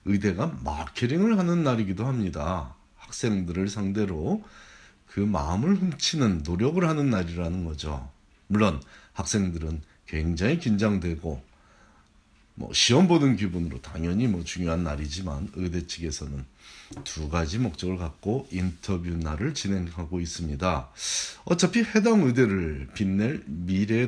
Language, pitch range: Korean, 80-120 Hz